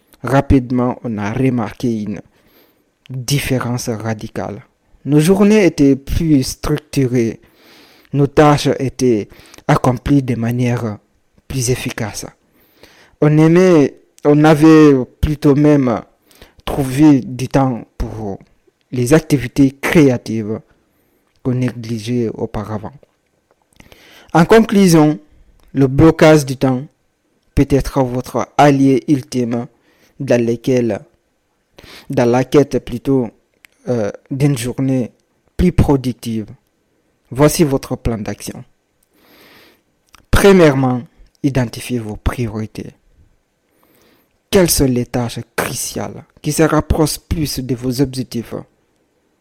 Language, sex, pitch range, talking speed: French, male, 115-145 Hz, 95 wpm